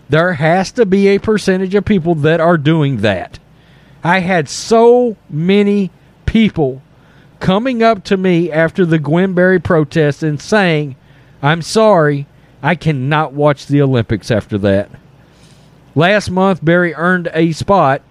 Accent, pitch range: American, 145-195 Hz